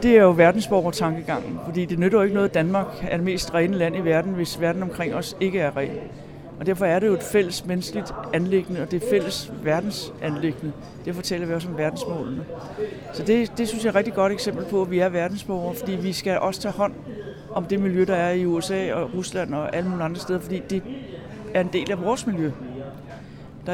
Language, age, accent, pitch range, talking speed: Danish, 60-79, native, 165-195 Hz, 230 wpm